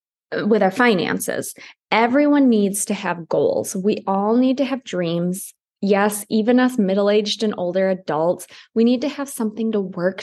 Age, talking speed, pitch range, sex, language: 20-39, 165 wpm, 185-230 Hz, female, English